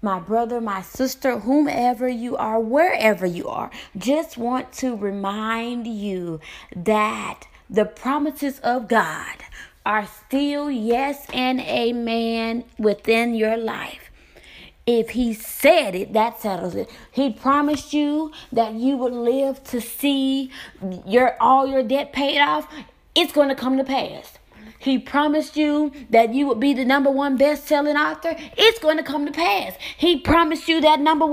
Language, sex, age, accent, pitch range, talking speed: English, female, 20-39, American, 230-295 Hz, 150 wpm